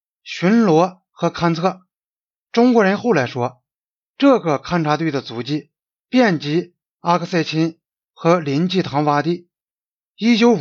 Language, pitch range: Chinese, 155-205 Hz